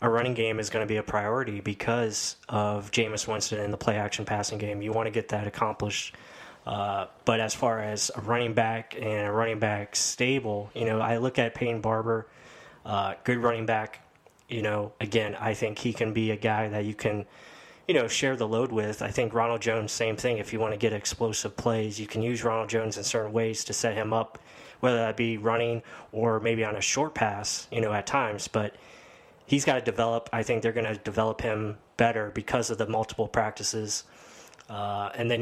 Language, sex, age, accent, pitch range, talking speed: English, male, 10-29, American, 105-115 Hz, 215 wpm